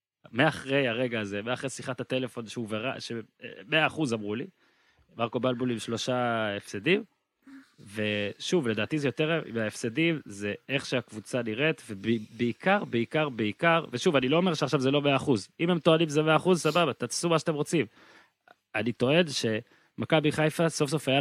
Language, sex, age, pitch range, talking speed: Hebrew, male, 30-49, 110-150 Hz, 165 wpm